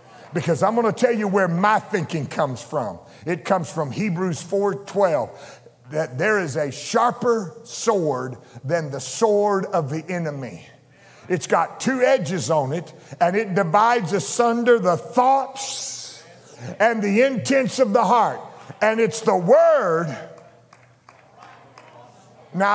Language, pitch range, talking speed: English, 175-240 Hz, 135 wpm